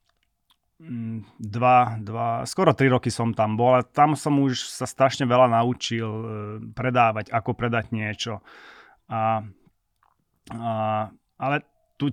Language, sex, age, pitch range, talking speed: Slovak, male, 30-49, 105-120 Hz, 120 wpm